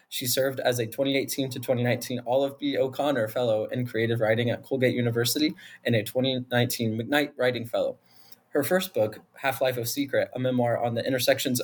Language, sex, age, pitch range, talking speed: English, male, 20-39, 120-140 Hz, 175 wpm